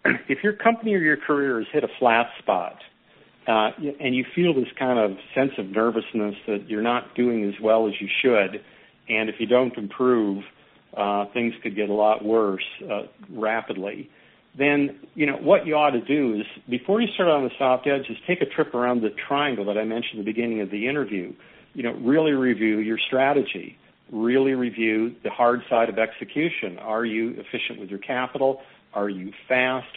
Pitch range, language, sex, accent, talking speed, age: 110-140 Hz, English, male, American, 195 wpm, 50-69